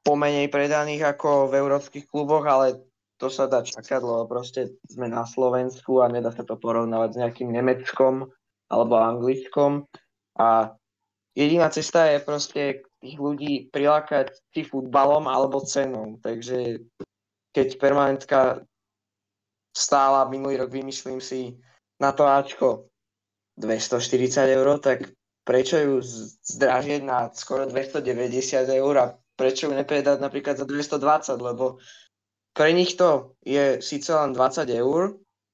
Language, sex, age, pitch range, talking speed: Slovak, male, 20-39, 125-145 Hz, 120 wpm